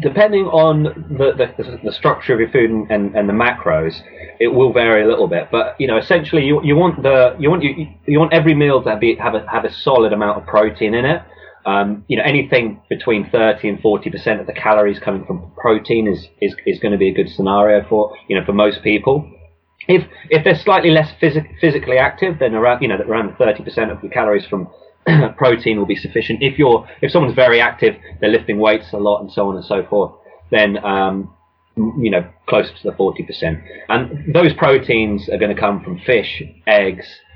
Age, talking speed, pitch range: 20-39, 220 wpm, 95-145 Hz